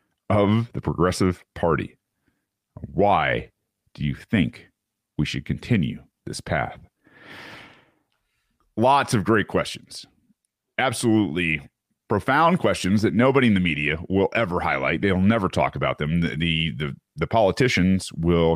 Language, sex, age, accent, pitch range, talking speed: English, male, 40-59, American, 80-105 Hz, 125 wpm